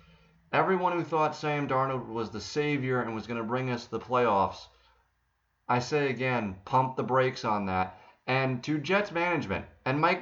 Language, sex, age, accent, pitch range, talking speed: English, male, 30-49, American, 120-160 Hz, 175 wpm